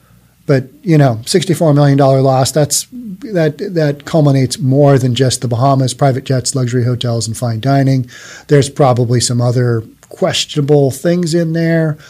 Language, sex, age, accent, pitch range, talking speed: English, male, 40-59, American, 130-160 Hz, 145 wpm